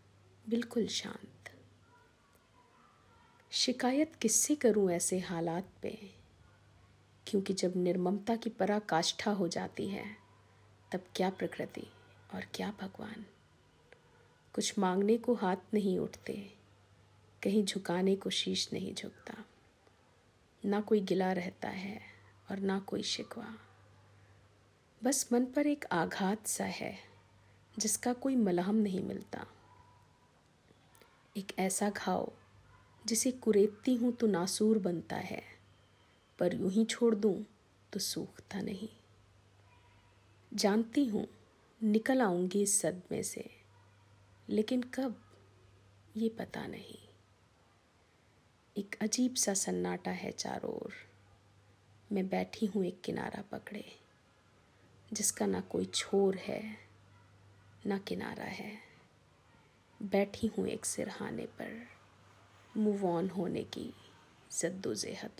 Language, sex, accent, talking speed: Hindi, female, native, 105 wpm